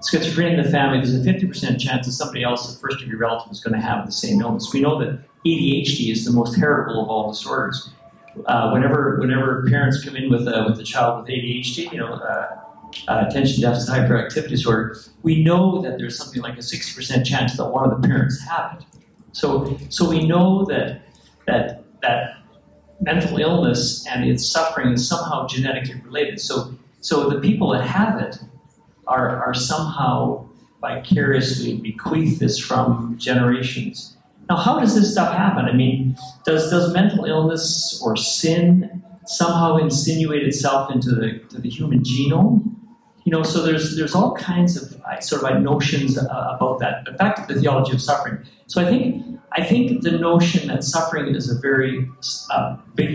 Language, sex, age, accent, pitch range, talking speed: English, male, 50-69, American, 125-170 Hz, 175 wpm